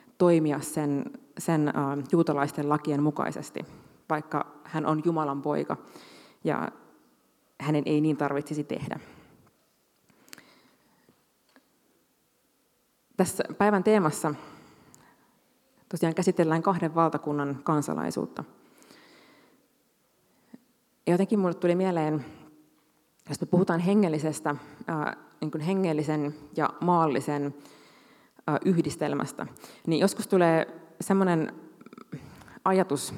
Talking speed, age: 75 wpm, 30-49